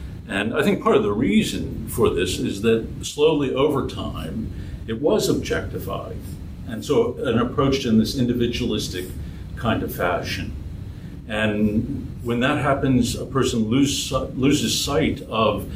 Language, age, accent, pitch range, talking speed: English, 50-69, American, 100-125 Hz, 145 wpm